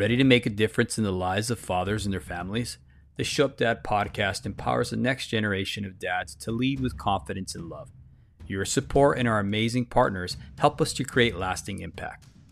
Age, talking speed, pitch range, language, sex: 30-49, 200 wpm, 95-125 Hz, English, male